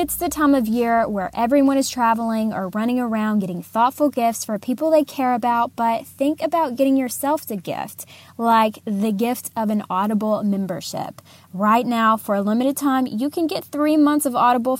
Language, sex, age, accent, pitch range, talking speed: English, female, 10-29, American, 200-260 Hz, 190 wpm